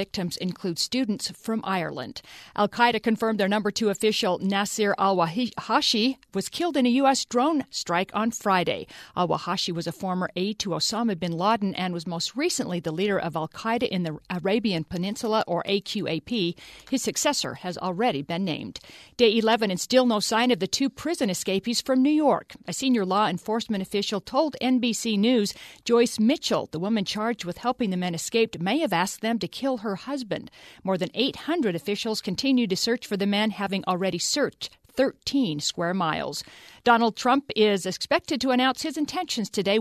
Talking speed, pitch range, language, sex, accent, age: 175 wpm, 190-245 Hz, English, female, American, 50-69